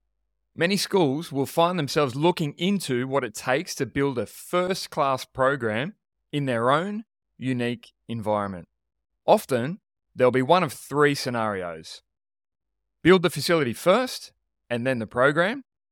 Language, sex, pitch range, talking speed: English, male, 120-170 Hz, 130 wpm